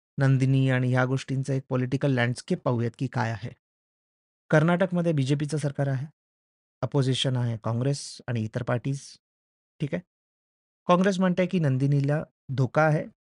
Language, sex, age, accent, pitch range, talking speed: Marathi, male, 30-49, native, 125-155 Hz, 130 wpm